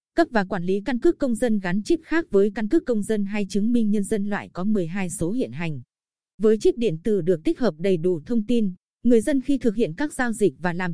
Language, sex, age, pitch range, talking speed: Vietnamese, female, 20-39, 185-245 Hz, 265 wpm